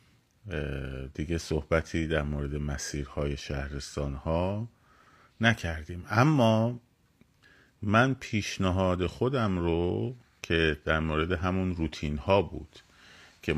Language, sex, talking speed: Persian, male, 90 wpm